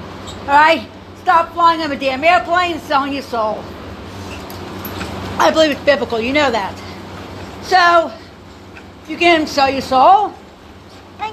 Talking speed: 130 wpm